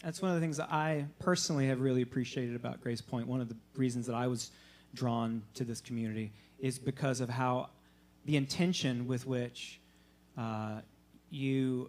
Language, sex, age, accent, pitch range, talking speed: English, male, 40-59, American, 120-155 Hz, 175 wpm